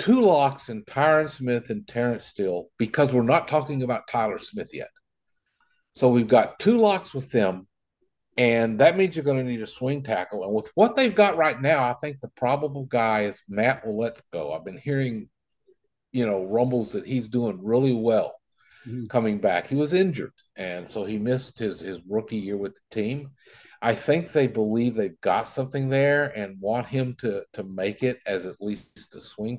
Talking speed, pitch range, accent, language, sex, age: 195 wpm, 115-155 Hz, American, English, male, 50-69